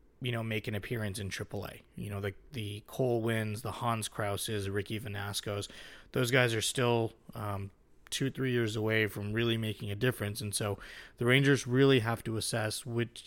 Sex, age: male, 20-39